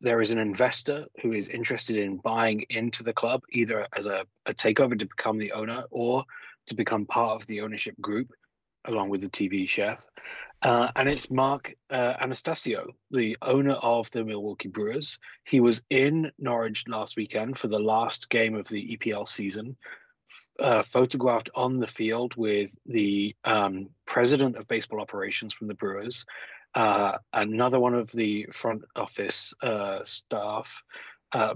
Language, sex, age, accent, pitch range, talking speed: English, male, 30-49, British, 110-130 Hz, 160 wpm